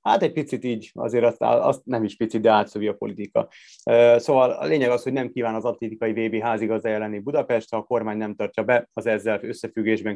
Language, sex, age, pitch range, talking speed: Hungarian, male, 30-49, 105-120 Hz, 200 wpm